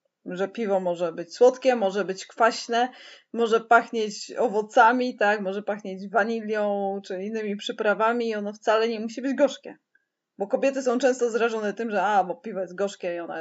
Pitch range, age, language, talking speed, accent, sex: 185-245 Hz, 20-39, Polish, 175 wpm, native, female